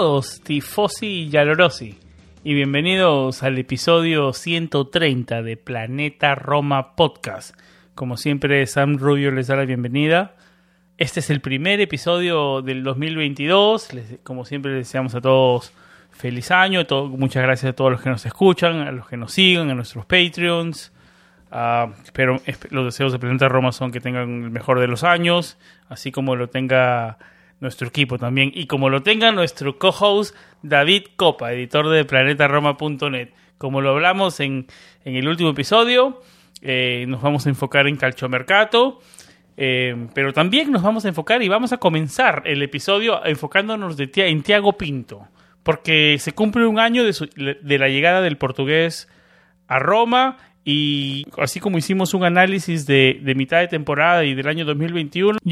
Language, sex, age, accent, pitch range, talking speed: Spanish, male, 30-49, Argentinian, 130-175 Hz, 160 wpm